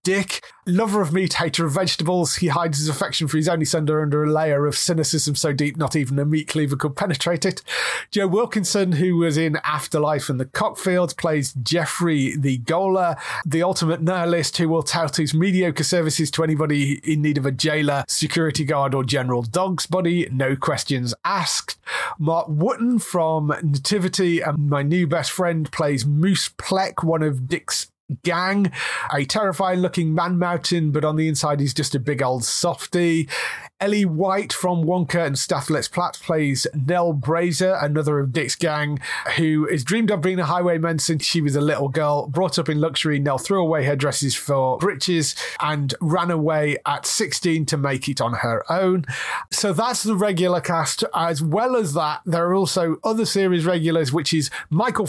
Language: English